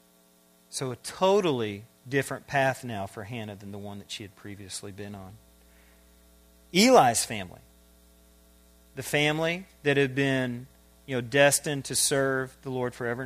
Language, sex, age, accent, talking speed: English, male, 40-59, American, 145 wpm